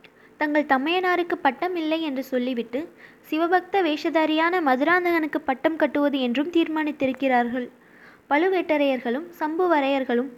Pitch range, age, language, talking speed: 265-325 Hz, 20-39, Tamil, 85 wpm